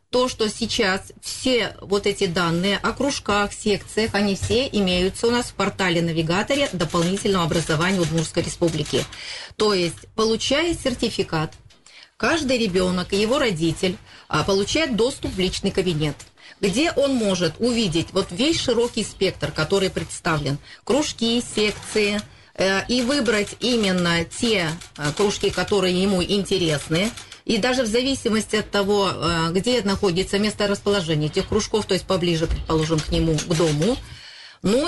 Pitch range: 170-225 Hz